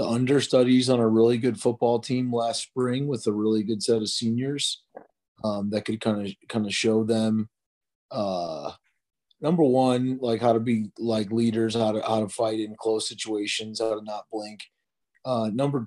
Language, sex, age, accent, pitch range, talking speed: English, male, 30-49, American, 105-120 Hz, 185 wpm